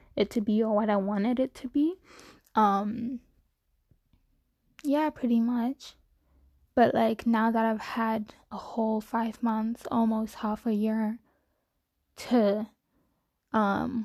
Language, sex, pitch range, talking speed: English, female, 215-240 Hz, 130 wpm